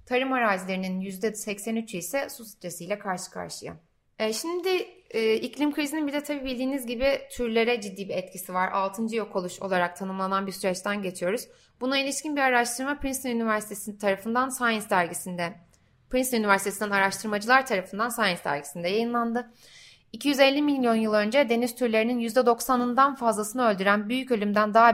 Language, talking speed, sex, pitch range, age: Turkish, 140 wpm, female, 205-255 Hz, 30-49